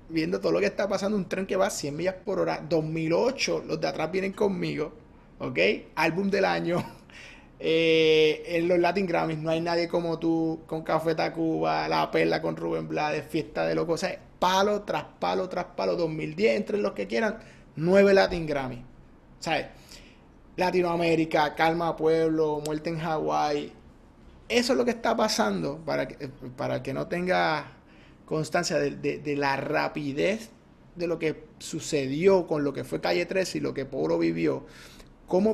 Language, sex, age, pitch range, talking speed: English, male, 30-49, 150-195 Hz, 175 wpm